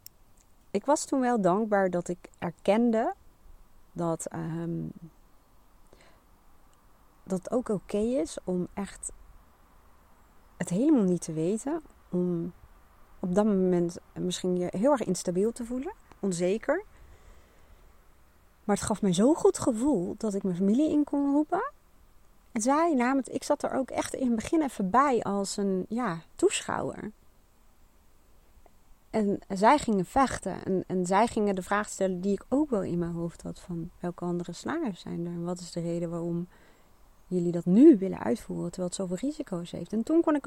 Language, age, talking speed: Dutch, 40-59, 165 wpm